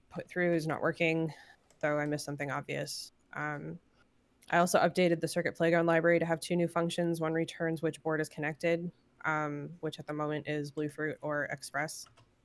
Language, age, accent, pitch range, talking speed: English, 20-39, American, 150-165 Hz, 185 wpm